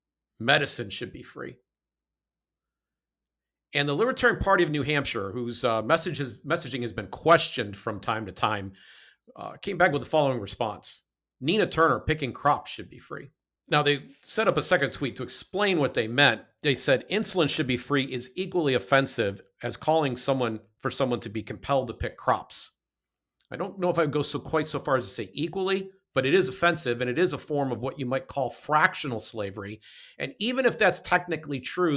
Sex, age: male, 50-69